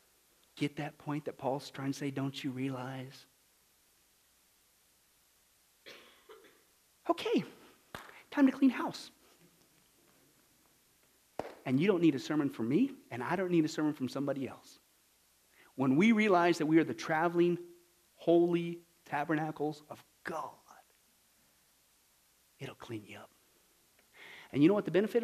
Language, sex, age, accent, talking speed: English, male, 40-59, American, 130 wpm